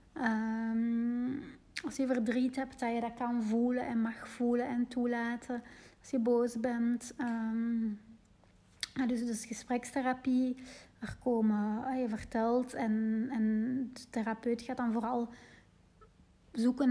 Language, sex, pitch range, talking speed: Dutch, female, 225-250 Hz, 130 wpm